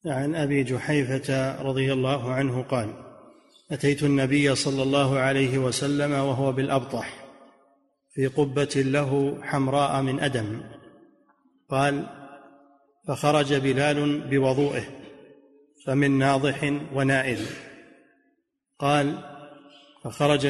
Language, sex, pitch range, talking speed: Arabic, male, 135-145 Hz, 90 wpm